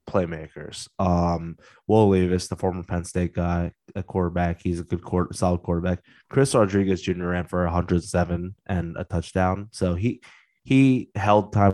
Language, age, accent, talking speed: English, 20-39, American, 160 wpm